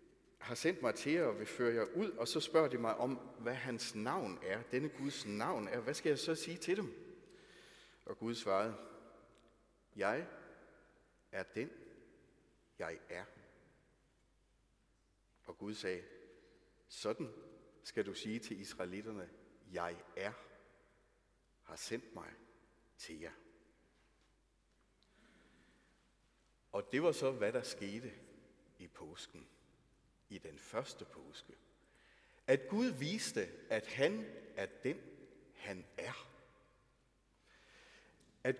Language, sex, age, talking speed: Danish, male, 60-79, 120 wpm